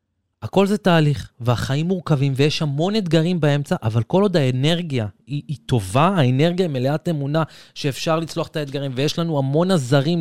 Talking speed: 160 wpm